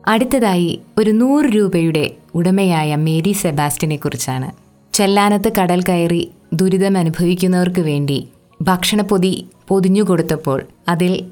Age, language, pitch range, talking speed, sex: 20-39, Malayalam, 155-185 Hz, 90 wpm, female